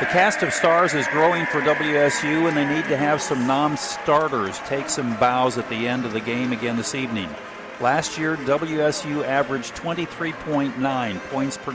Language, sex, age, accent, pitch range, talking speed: English, male, 50-69, American, 125-155 Hz, 175 wpm